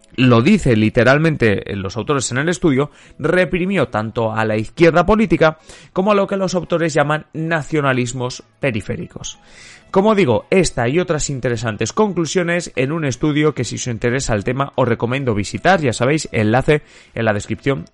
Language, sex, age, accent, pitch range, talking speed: Spanish, male, 30-49, Spanish, 115-175 Hz, 160 wpm